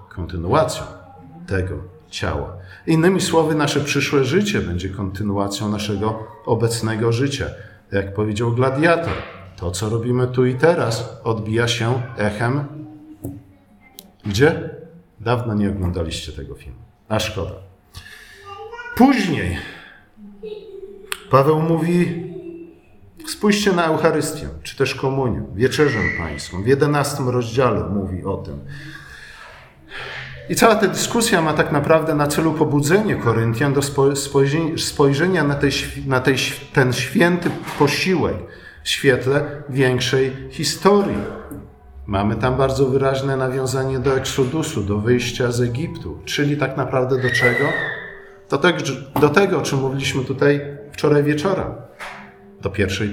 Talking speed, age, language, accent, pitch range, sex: 115 wpm, 50-69, Polish, native, 110-155 Hz, male